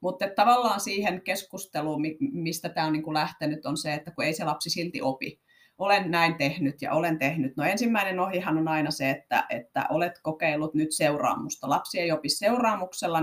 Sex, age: female, 30-49